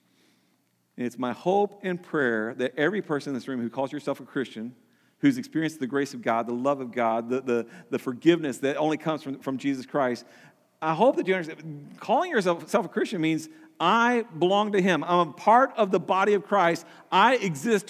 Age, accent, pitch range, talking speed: 40-59, American, 170-235 Hz, 205 wpm